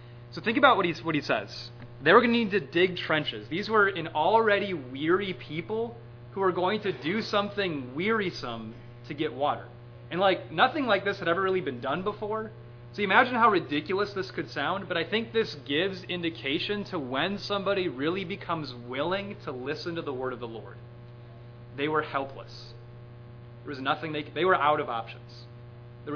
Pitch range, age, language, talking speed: 120-180 Hz, 30-49, English, 195 wpm